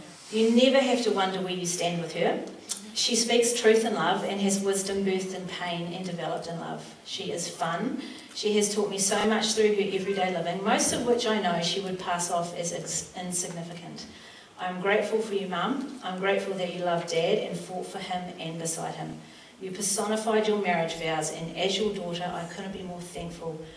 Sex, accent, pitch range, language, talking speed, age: female, Australian, 175-215 Hz, English, 205 wpm, 40-59